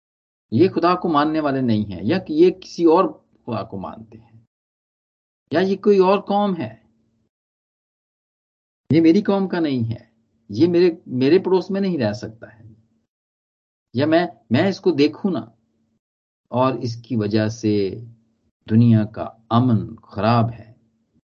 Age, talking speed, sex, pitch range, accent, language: 50-69, 145 wpm, male, 110-145 Hz, native, Hindi